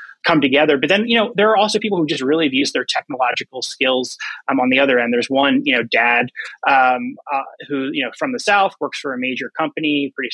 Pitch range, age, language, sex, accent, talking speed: 135-185 Hz, 20-39, English, male, American, 245 wpm